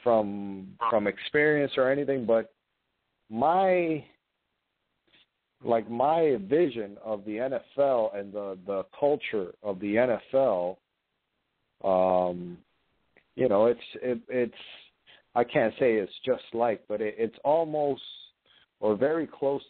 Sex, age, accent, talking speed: male, 40-59, American, 120 wpm